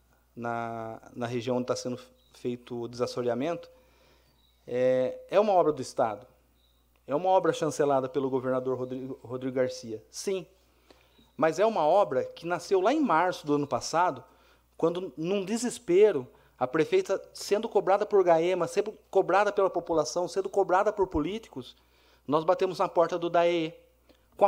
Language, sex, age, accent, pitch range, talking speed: Portuguese, male, 30-49, Brazilian, 120-190 Hz, 150 wpm